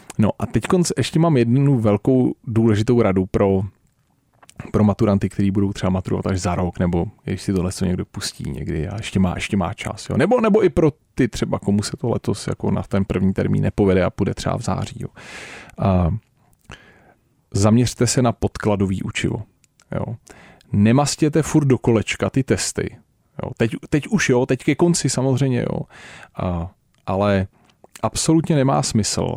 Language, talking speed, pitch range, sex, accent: Czech, 170 wpm, 95-125 Hz, male, native